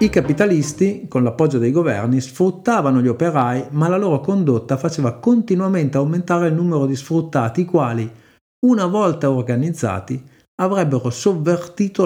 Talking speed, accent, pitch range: 135 wpm, native, 120-175 Hz